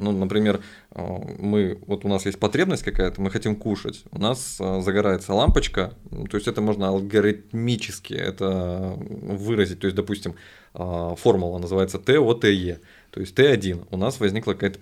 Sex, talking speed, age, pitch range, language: male, 145 wpm, 20-39, 100-115 Hz, Russian